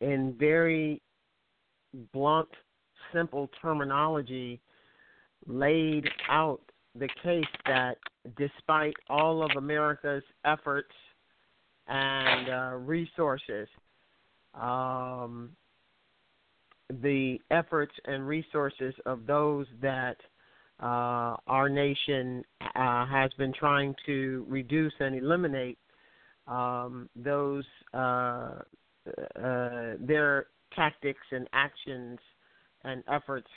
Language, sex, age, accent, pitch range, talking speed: English, male, 50-69, American, 130-150 Hz, 85 wpm